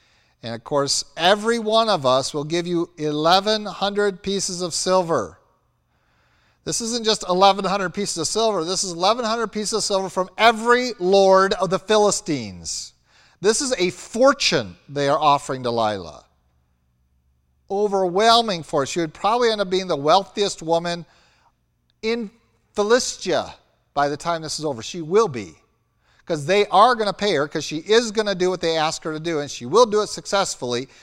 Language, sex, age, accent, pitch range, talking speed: English, male, 50-69, American, 135-200 Hz, 170 wpm